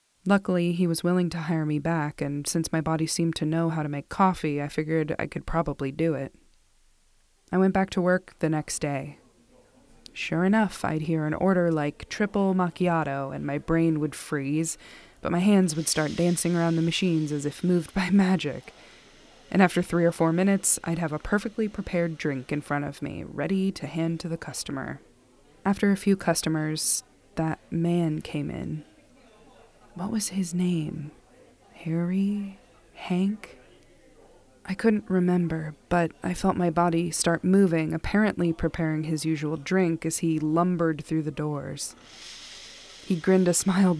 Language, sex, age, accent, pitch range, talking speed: English, female, 20-39, American, 155-180 Hz, 170 wpm